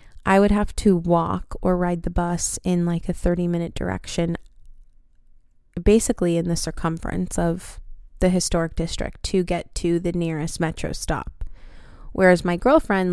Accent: American